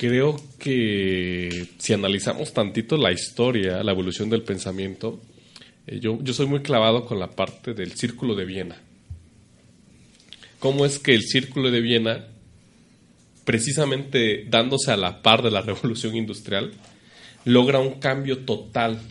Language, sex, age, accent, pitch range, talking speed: Spanish, male, 30-49, Mexican, 105-135 Hz, 135 wpm